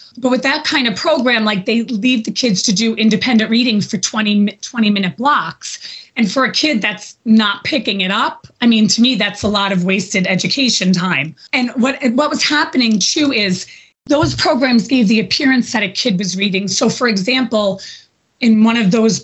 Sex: female